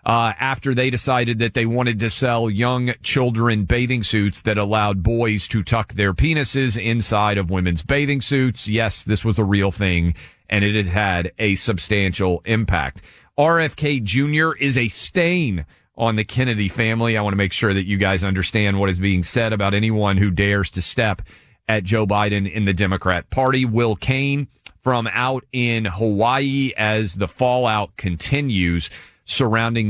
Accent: American